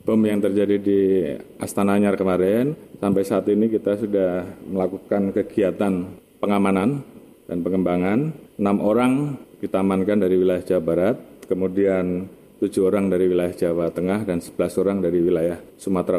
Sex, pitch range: male, 90-100 Hz